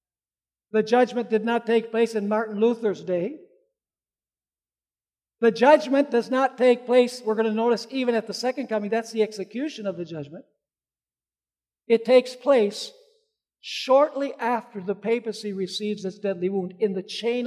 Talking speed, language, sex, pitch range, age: 155 wpm, English, male, 220-285 Hz, 60-79